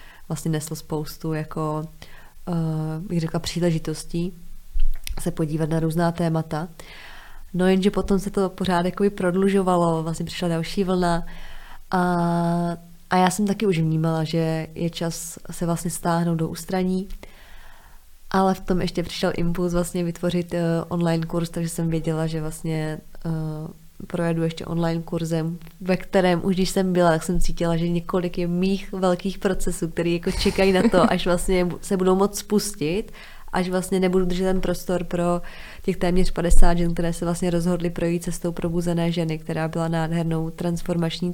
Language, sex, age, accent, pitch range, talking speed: Czech, female, 20-39, native, 165-180 Hz, 155 wpm